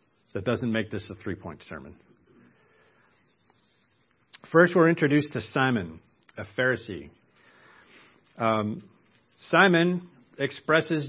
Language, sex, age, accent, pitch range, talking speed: English, male, 50-69, American, 110-145 Hz, 90 wpm